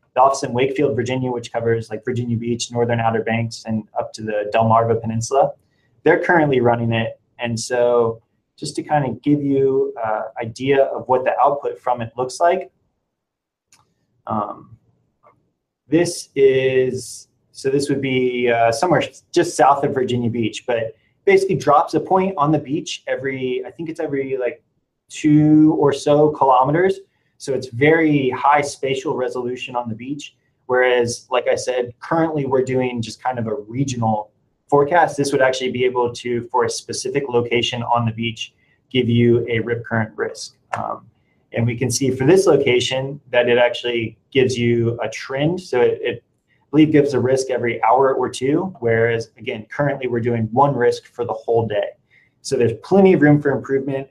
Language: English